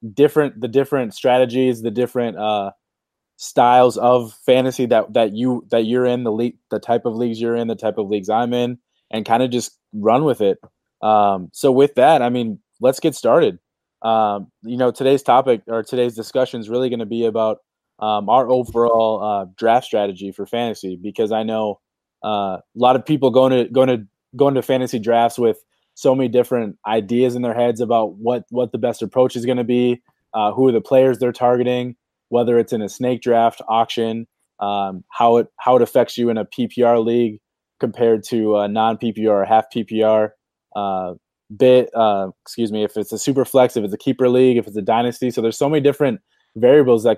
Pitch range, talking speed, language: 110-125 Hz, 205 wpm, English